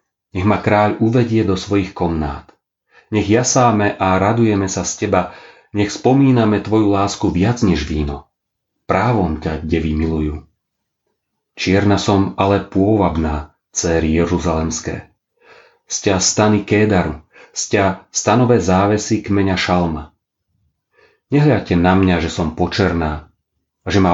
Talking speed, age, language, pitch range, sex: 120 wpm, 40-59, Slovak, 85-105 Hz, male